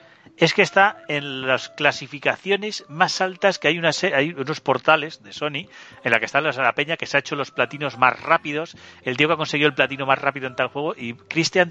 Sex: male